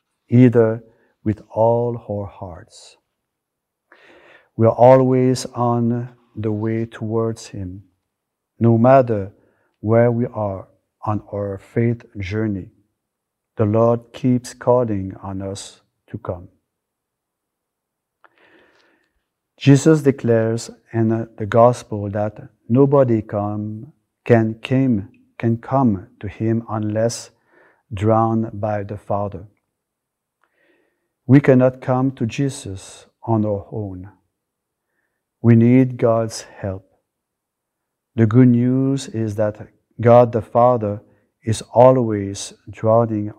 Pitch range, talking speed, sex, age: 105-120 Hz, 95 wpm, male, 50-69